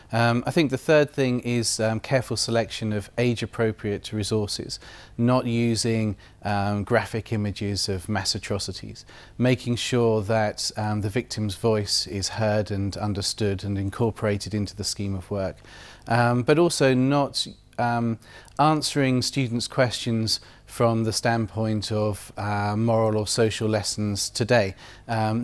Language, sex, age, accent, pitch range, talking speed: English, male, 30-49, British, 100-120 Hz, 135 wpm